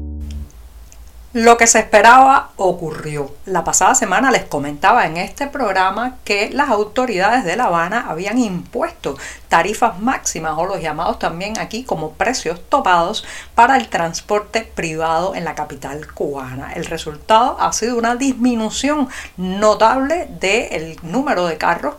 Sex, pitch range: female, 170-235 Hz